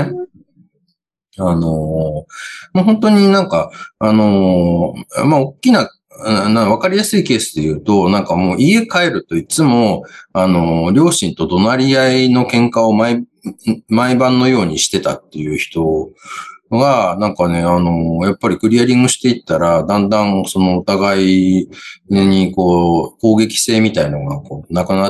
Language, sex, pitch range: Japanese, male, 85-130 Hz